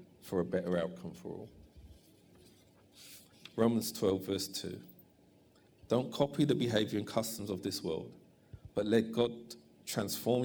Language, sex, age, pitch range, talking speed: English, male, 50-69, 95-120 Hz, 130 wpm